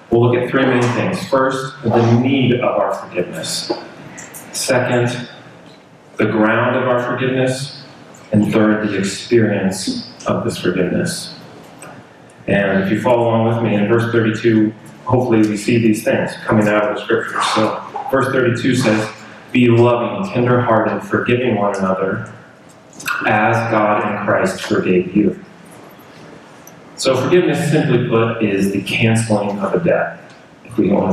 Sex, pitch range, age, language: male, 105-125 Hz, 30-49, English